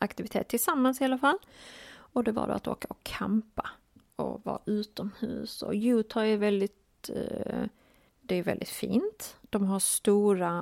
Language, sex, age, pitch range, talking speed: Swedish, female, 30-49, 195-235 Hz, 155 wpm